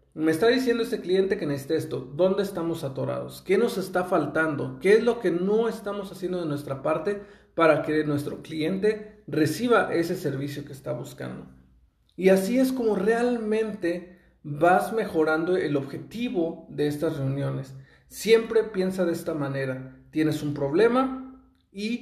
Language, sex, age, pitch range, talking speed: Spanish, male, 40-59, 150-200 Hz, 155 wpm